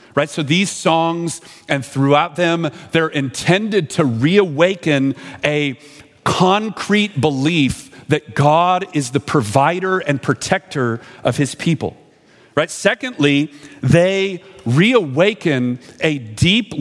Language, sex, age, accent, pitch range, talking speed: English, male, 40-59, American, 130-165 Hz, 105 wpm